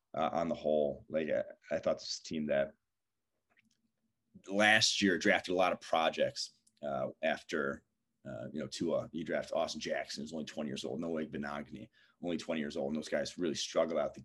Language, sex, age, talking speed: English, male, 30-49, 200 wpm